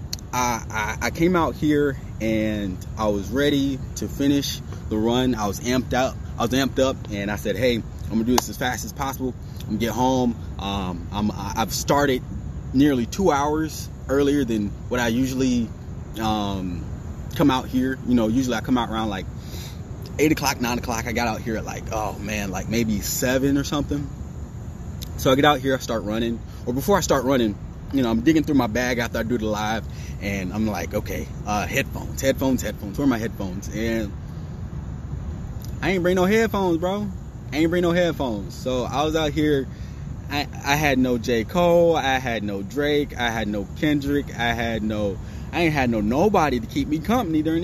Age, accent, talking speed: 20-39, American, 200 wpm